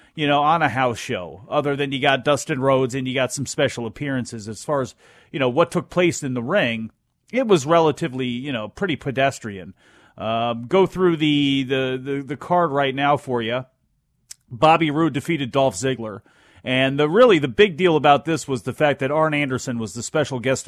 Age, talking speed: 40-59, 205 wpm